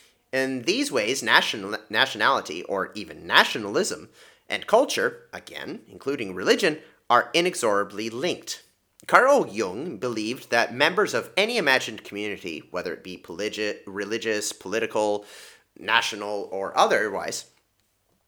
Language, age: English, 30-49